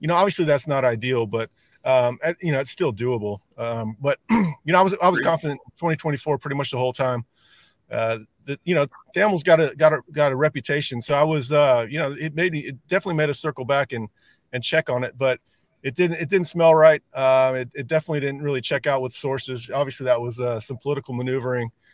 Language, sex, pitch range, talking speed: English, male, 125-160 Hz, 230 wpm